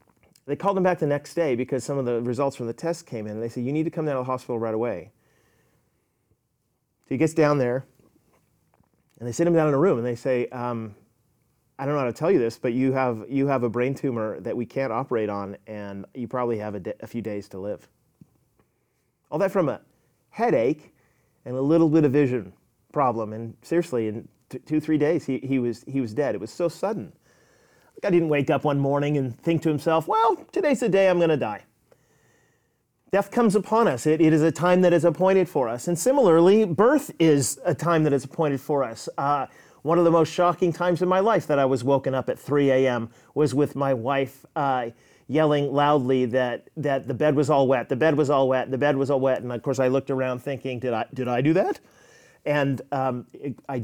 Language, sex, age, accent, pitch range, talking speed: English, male, 30-49, American, 125-160 Hz, 230 wpm